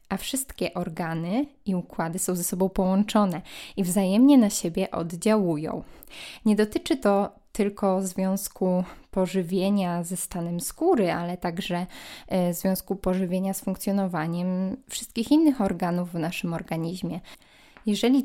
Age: 20-39